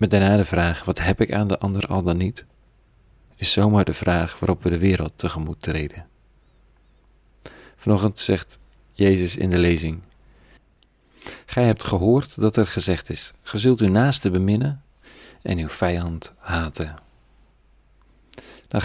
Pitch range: 85-110 Hz